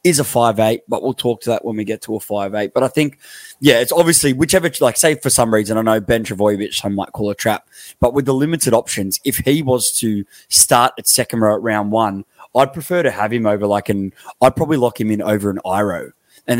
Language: English